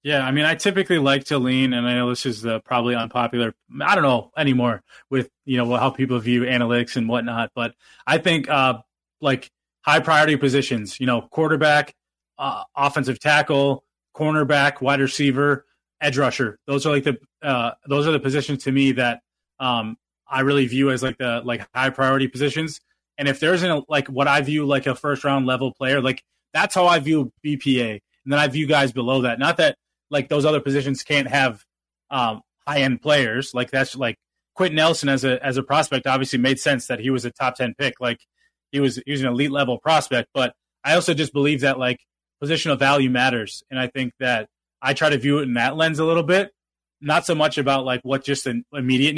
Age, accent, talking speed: 20-39, American, 210 wpm